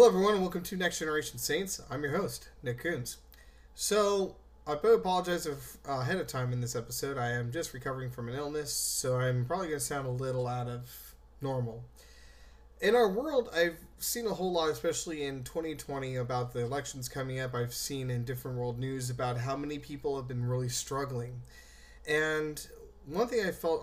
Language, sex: English, male